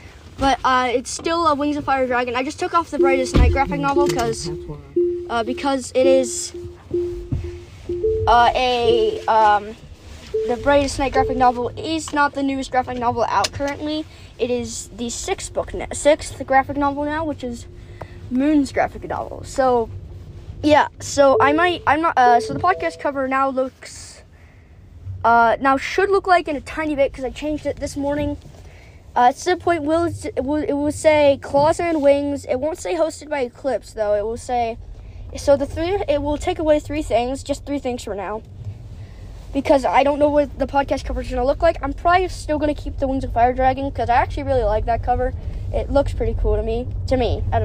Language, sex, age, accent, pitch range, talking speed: English, female, 20-39, American, 200-295 Hz, 200 wpm